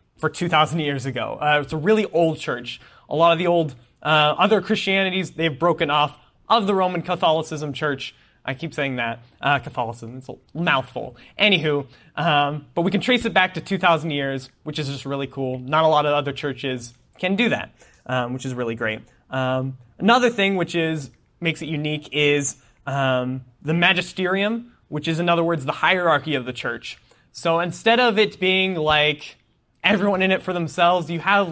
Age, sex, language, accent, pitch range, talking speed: 20-39, male, English, American, 135-175 Hz, 190 wpm